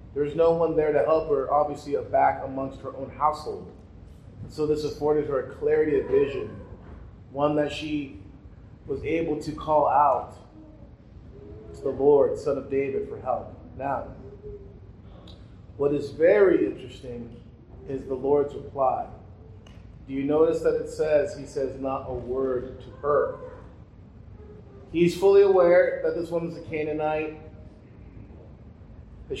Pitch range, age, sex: 120-170 Hz, 30-49, male